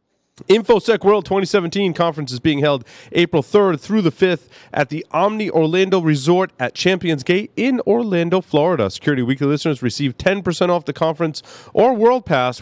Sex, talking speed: male, 160 wpm